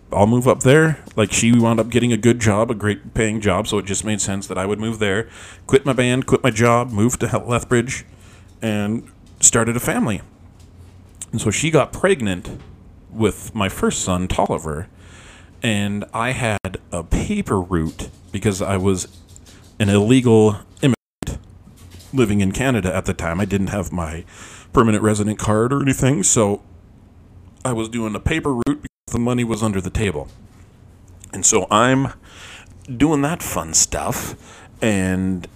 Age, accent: 40-59, American